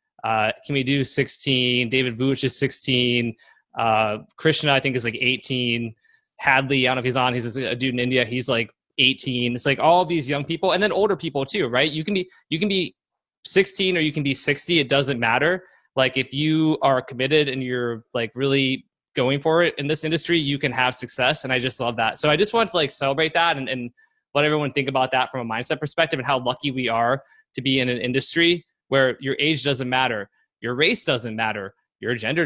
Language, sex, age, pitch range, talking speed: English, male, 20-39, 125-160 Hz, 225 wpm